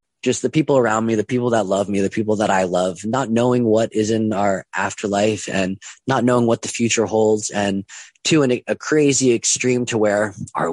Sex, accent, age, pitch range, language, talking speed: male, American, 30-49, 95-115 Hz, English, 215 wpm